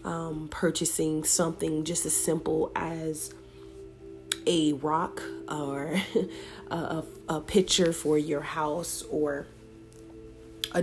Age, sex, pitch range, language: 30-49, female, 145-165 Hz, English